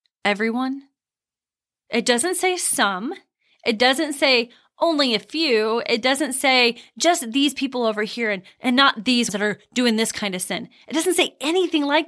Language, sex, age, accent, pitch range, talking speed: English, female, 20-39, American, 230-305 Hz, 175 wpm